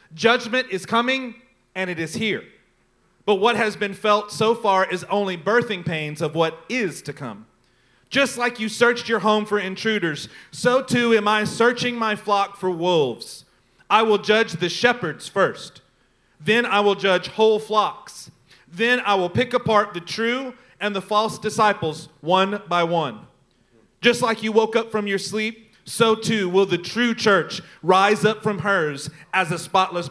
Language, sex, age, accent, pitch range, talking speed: English, male, 40-59, American, 165-215 Hz, 175 wpm